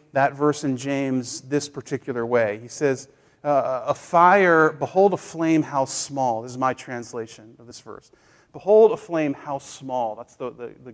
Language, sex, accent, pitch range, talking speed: English, male, American, 125-155 Hz, 175 wpm